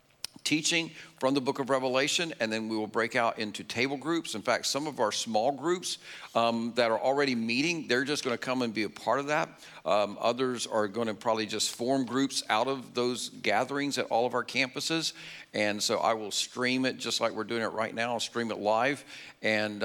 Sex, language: male, English